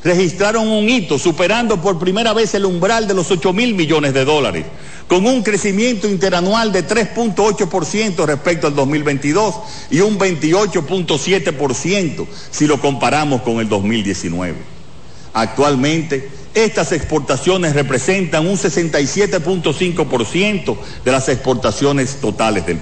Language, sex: Spanish, male